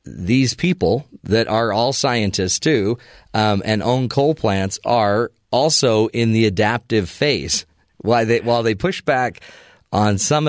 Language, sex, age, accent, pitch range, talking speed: English, male, 40-59, American, 105-130 Hz, 145 wpm